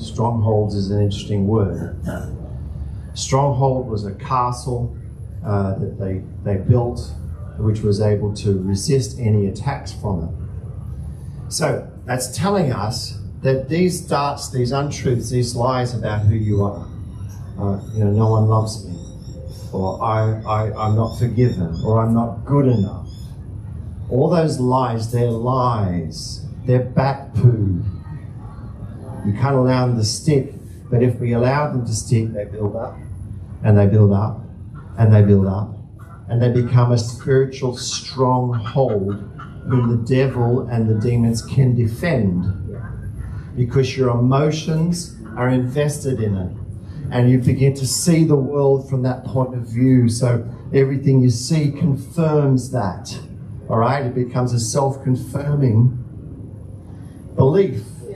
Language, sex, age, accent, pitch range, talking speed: English, male, 40-59, Australian, 105-130 Hz, 140 wpm